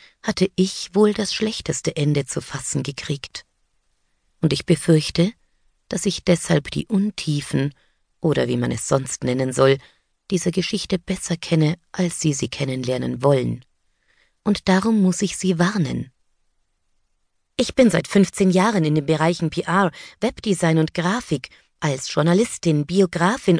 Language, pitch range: German, 150-200 Hz